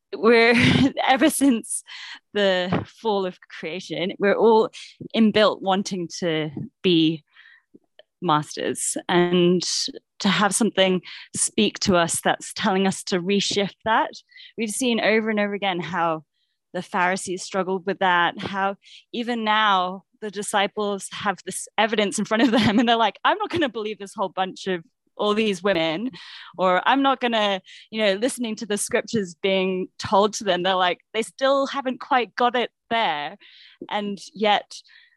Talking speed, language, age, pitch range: 155 wpm, English, 10-29, 180-225 Hz